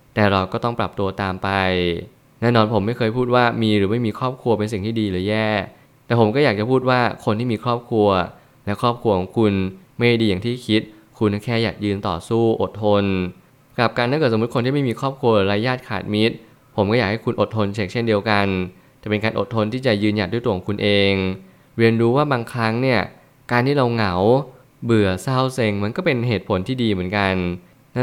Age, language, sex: 20-39, Thai, male